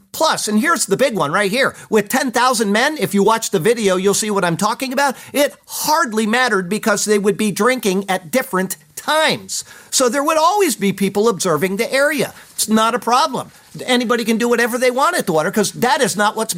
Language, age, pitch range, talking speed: English, 50-69, 185-240 Hz, 215 wpm